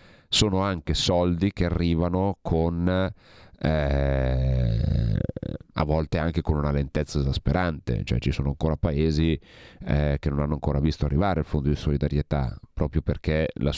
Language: Italian